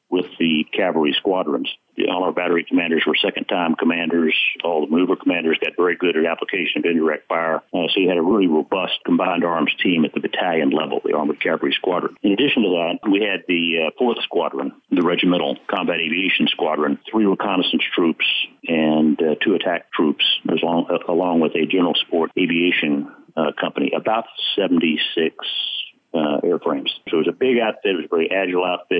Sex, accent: male, American